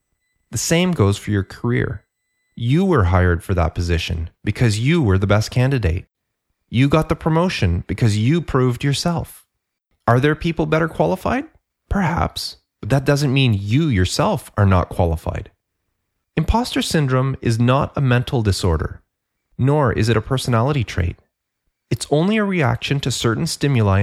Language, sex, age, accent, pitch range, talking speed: English, male, 30-49, American, 95-150 Hz, 150 wpm